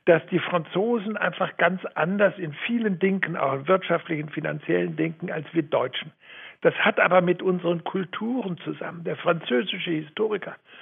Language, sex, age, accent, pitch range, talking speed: German, male, 60-79, German, 155-195 Hz, 150 wpm